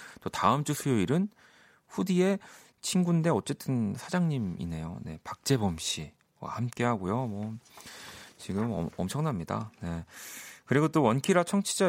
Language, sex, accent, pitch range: Korean, male, native, 95-145 Hz